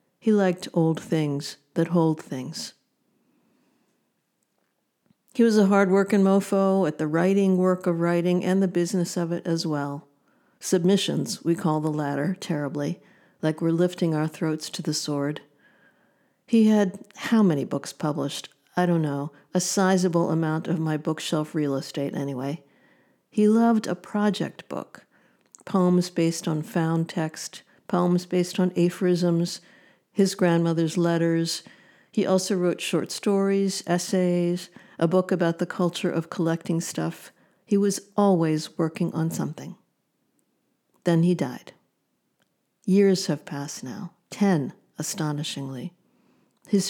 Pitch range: 160-190 Hz